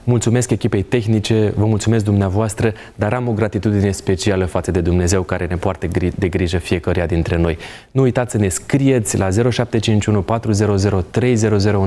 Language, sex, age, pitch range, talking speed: Romanian, male, 20-39, 95-120 Hz, 145 wpm